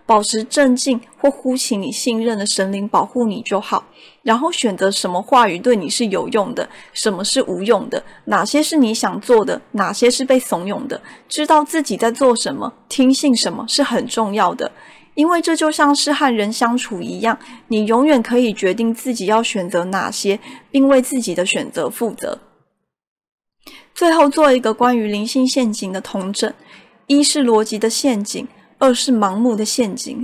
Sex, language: female, Chinese